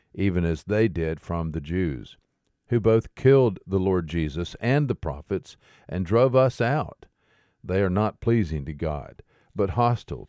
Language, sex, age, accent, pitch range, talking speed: English, male, 50-69, American, 85-115 Hz, 165 wpm